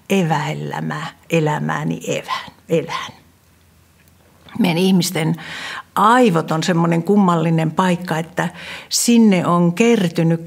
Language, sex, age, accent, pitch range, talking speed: Finnish, female, 60-79, native, 165-210 Hz, 90 wpm